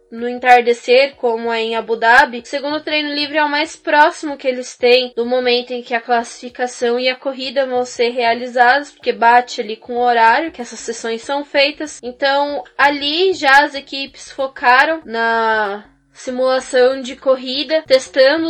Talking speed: 170 wpm